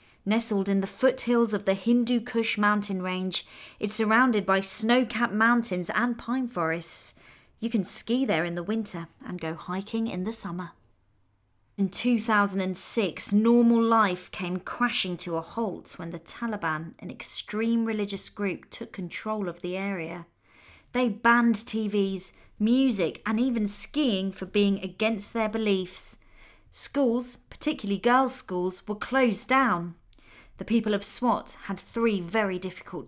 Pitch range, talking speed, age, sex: 170-230 Hz, 145 wpm, 30-49, female